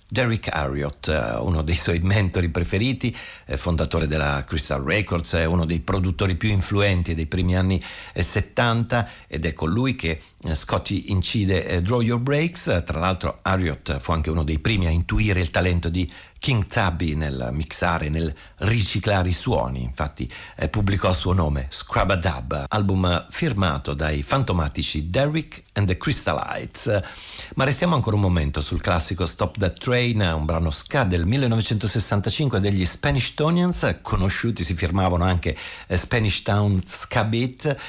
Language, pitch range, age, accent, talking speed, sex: Italian, 85-110 Hz, 50-69, native, 145 wpm, male